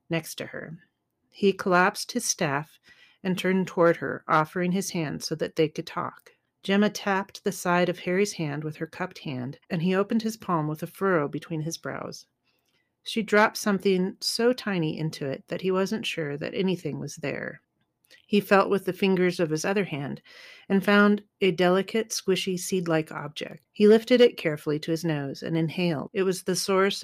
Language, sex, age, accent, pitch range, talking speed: English, female, 40-59, American, 160-195 Hz, 190 wpm